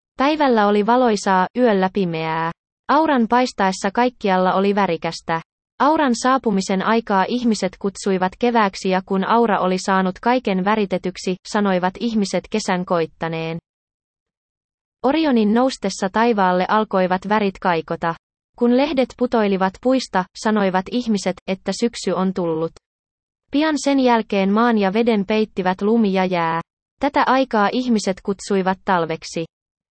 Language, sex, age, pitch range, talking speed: Finnish, female, 20-39, 185-230 Hz, 115 wpm